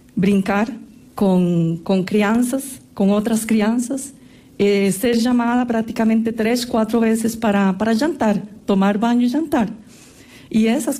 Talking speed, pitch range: 115 wpm, 195-230 Hz